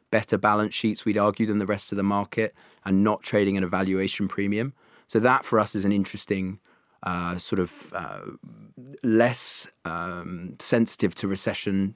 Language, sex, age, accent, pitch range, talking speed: English, male, 20-39, British, 95-110 Hz, 170 wpm